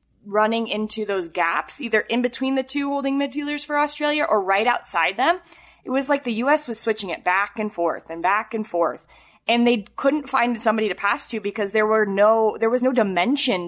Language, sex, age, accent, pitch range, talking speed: English, female, 20-39, American, 185-260 Hz, 210 wpm